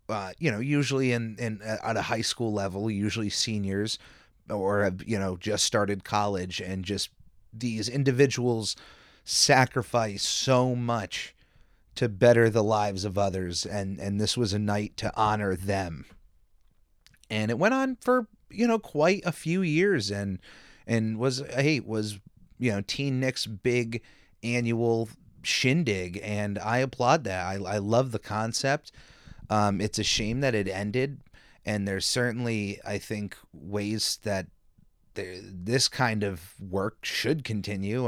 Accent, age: American, 30-49